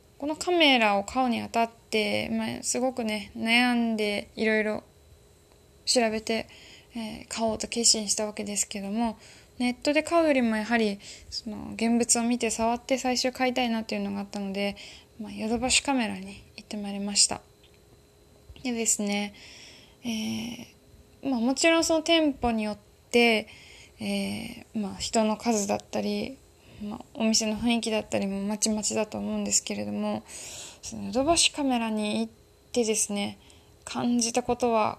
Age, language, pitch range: 10-29, Japanese, 210-250 Hz